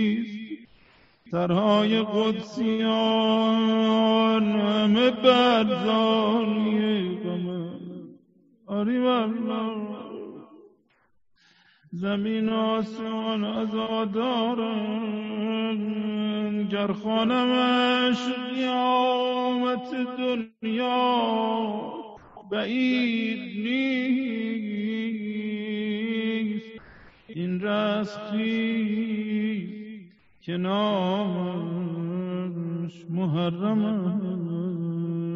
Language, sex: Persian, male